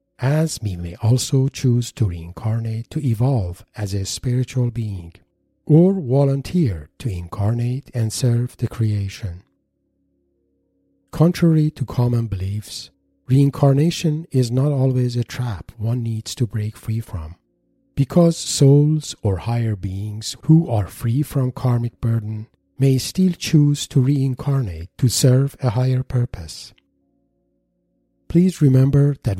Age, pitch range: 50-69, 100-135 Hz